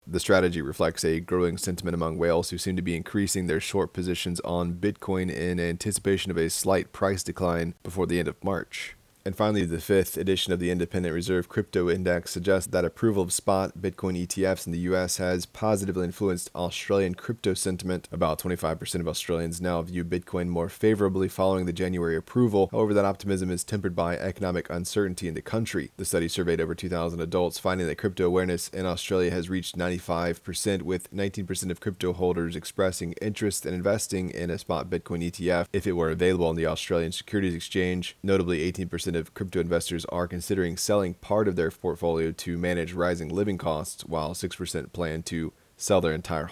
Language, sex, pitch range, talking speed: English, male, 85-95 Hz, 185 wpm